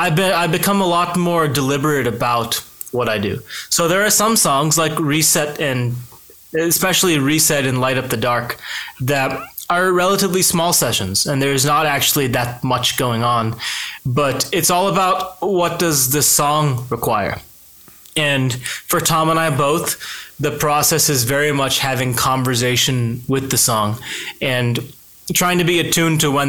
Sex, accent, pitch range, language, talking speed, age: male, American, 130-160 Hz, Portuguese, 165 wpm, 20-39